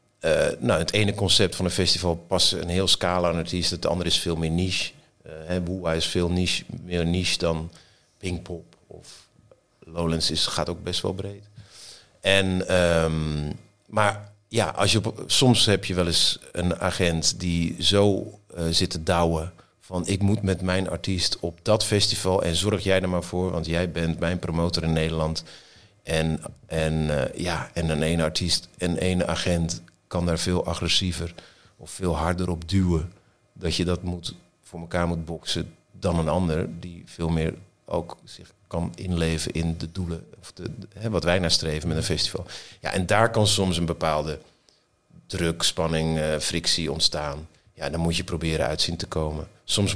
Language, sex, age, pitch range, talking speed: Dutch, male, 50-69, 85-95 Hz, 185 wpm